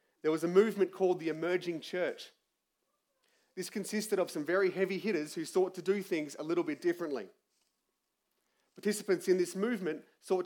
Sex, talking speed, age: male, 165 wpm, 30-49